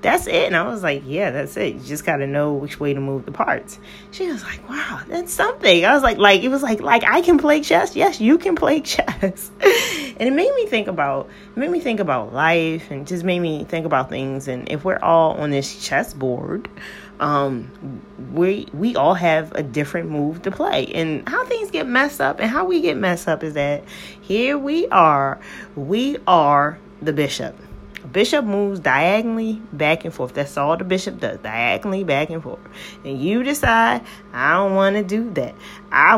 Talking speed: 205 wpm